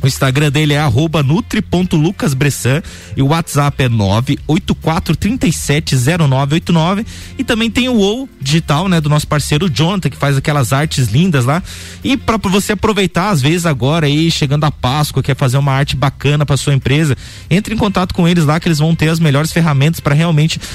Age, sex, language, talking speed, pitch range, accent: 20-39, male, Portuguese, 175 wpm, 140-180 Hz, Brazilian